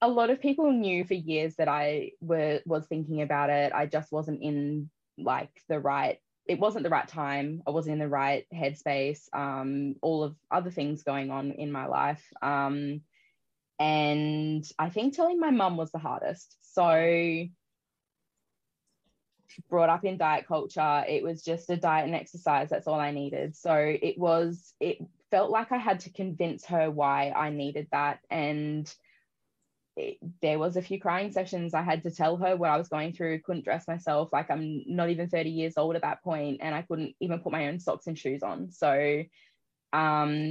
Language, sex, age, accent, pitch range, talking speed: English, female, 20-39, Australian, 150-175 Hz, 190 wpm